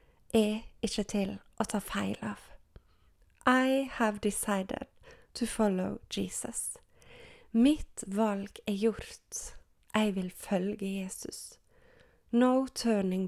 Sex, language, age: female, English, 30-49